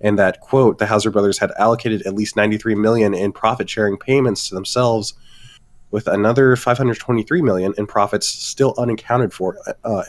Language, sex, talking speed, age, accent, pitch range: English, male, 160 wpm, 20-39, American, 100-115 Hz